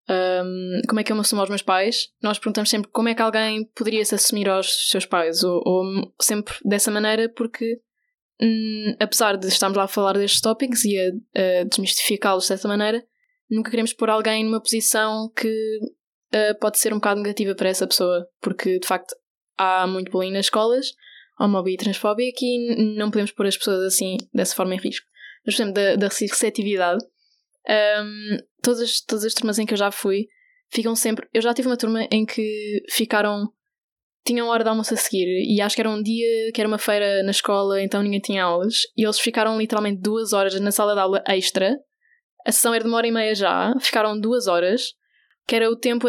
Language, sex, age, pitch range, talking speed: Portuguese, female, 10-29, 200-235 Hz, 205 wpm